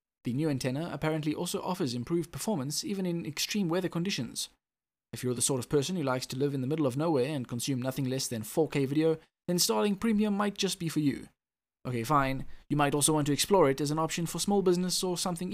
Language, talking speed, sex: English, 230 wpm, male